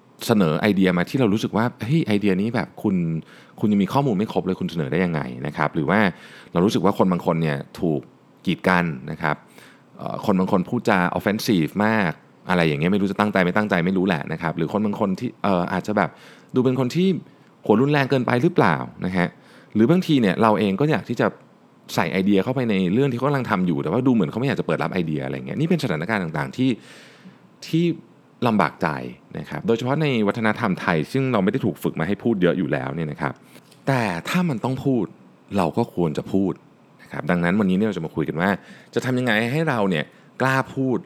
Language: Thai